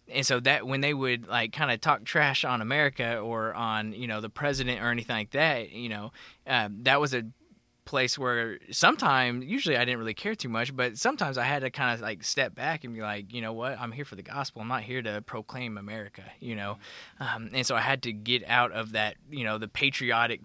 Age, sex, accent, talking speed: 20-39, male, American, 240 wpm